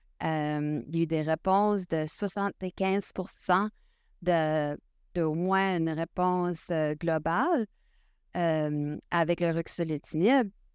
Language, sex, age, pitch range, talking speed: French, female, 30-49, 160-195 Hz, 110 wpm